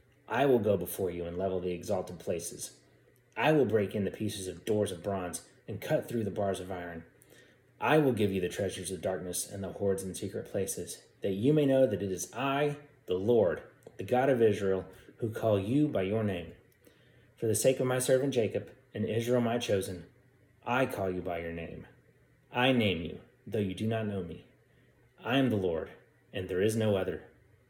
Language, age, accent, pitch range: English, 30-49, American, 95-120 Hz